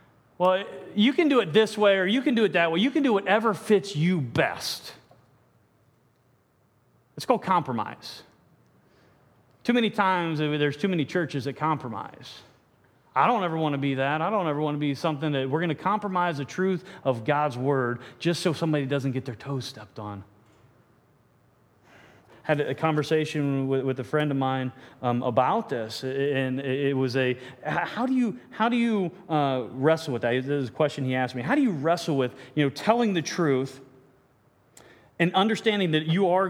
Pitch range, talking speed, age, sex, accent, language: 130-170 Hz, 185 wpm, 30-49, male, American, English